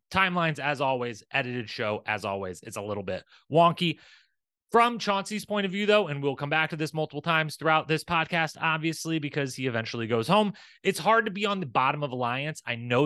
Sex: male